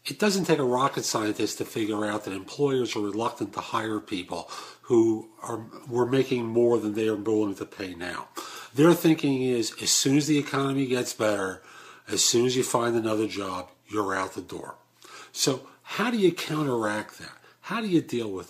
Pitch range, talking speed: 110-155 Hz, 190 wpm